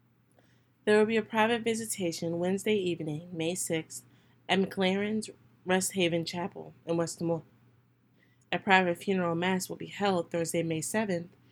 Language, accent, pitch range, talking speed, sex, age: English, American, 155-190 Hz, 140 wpm, female, 20-39